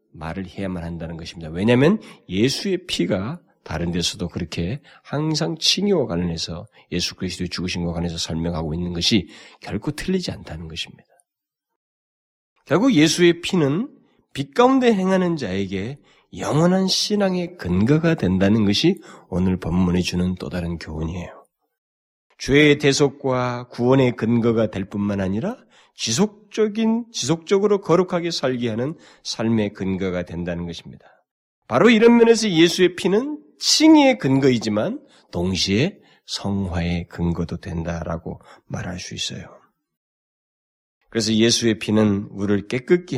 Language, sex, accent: Korean, male, native